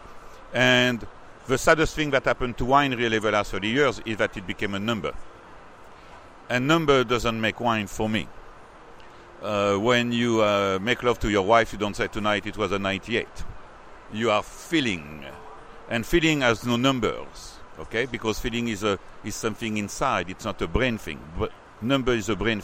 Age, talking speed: 60-79, 180 wpm